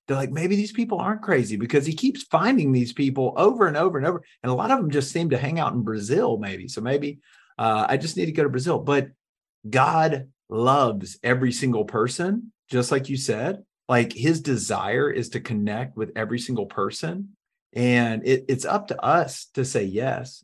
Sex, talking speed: male, 205 wpm